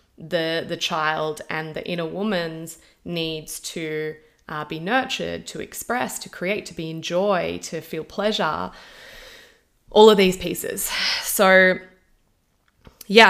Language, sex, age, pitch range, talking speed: English, female, 20-39, 160-195 Hz, 130 wpm